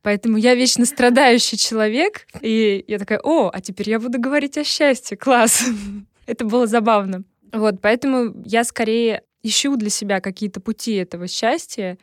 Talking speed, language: 155 wpm, Russian